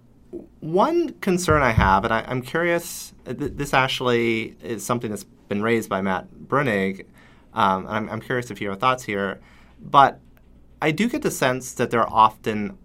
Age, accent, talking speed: 30-49, American, 180 wpm